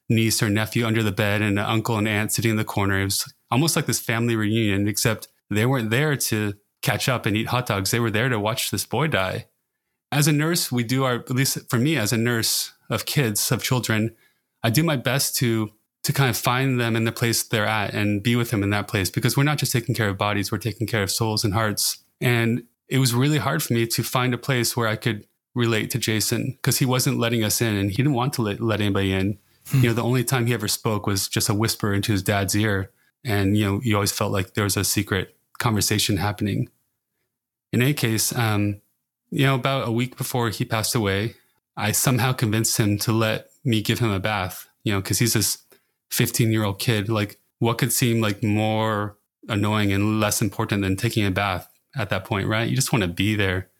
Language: English